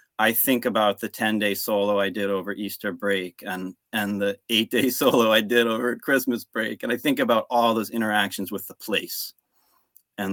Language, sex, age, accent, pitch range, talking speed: English, male, 30-49, American, 100-125 Hz, 185 wpm